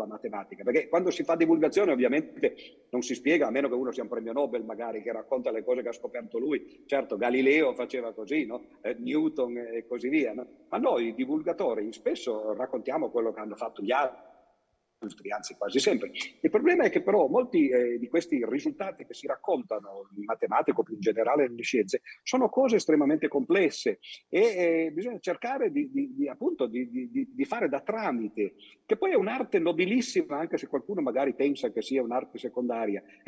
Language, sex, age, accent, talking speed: Italian, male, 50-69, native, 180 wpm